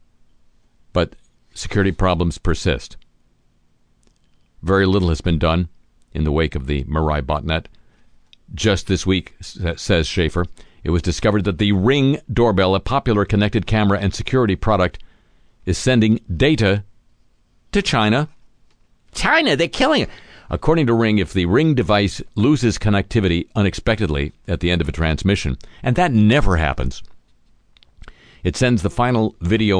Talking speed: 140 wpm